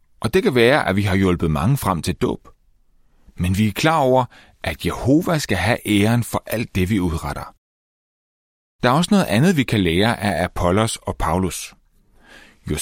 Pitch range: 90-140 Hz